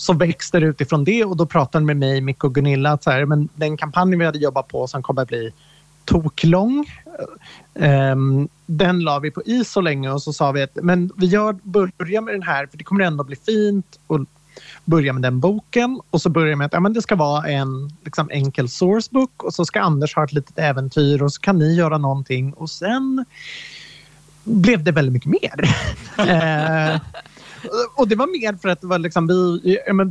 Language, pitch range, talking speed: English, 145-185 Hz, 210 wpm